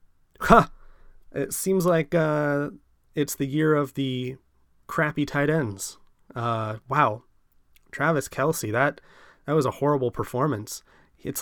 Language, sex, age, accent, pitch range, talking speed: English, male, 30-49, American, 115-145 Hz, 125 wpm